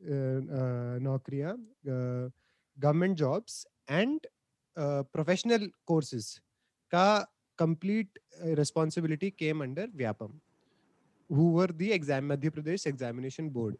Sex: male